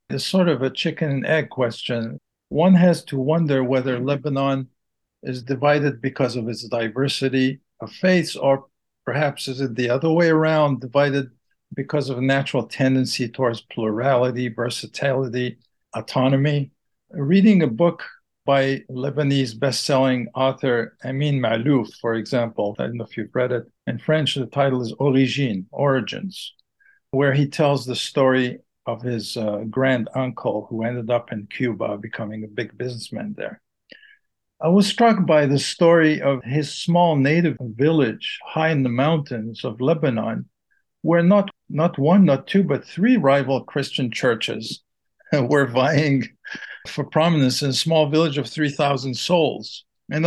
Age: 50-69